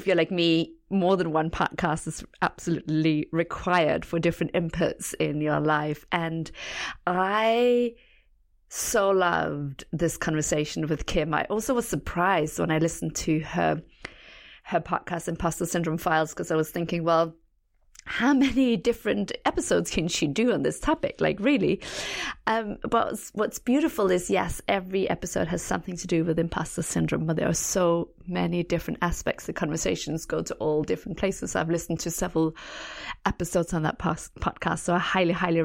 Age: 30-49